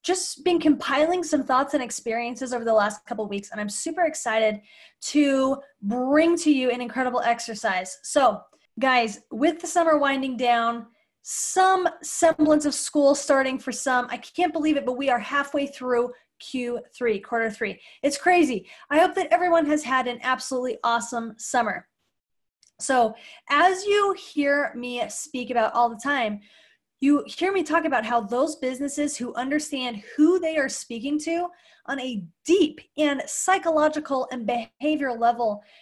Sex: female